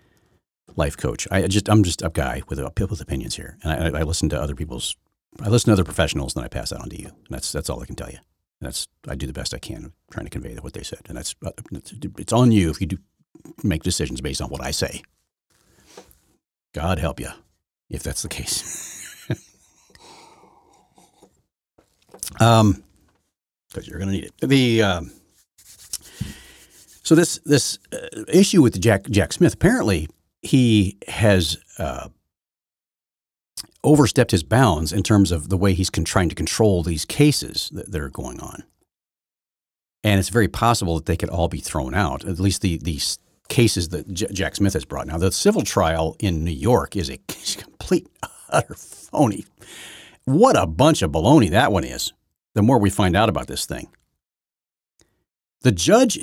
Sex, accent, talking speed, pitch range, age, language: male, American, 180 wpm, 80-110 Hz, 60-79, English